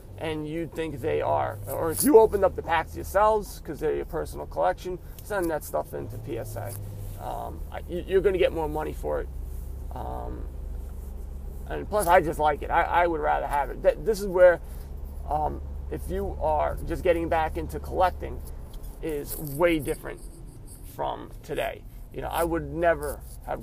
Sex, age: male, 30-49